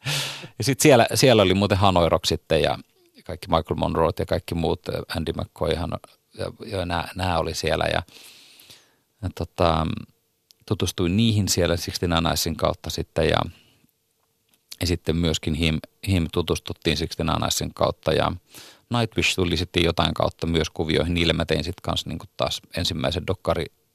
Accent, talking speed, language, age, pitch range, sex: native, 140 wpm, Finnish, 30-49, 85-100 Hz, male